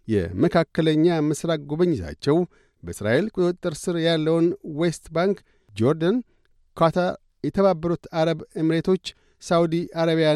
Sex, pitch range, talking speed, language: male, 150-175 Hz, 100 wpm, Amharic